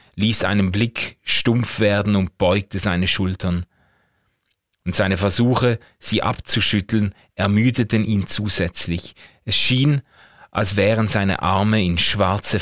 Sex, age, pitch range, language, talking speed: male, 30-49, 95-110 Hz, German, 120 wpm